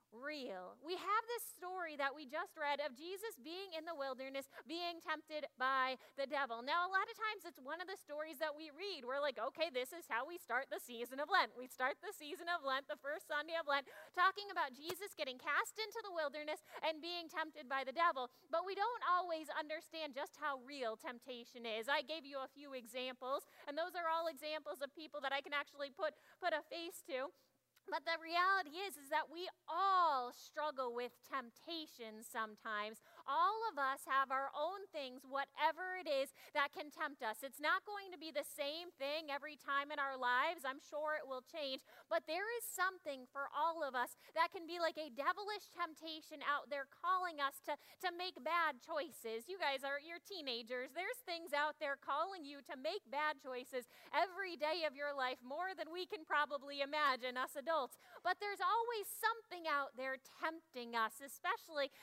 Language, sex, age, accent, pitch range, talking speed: English, female, 30-49, American, 275-345 Hz, 200 wpm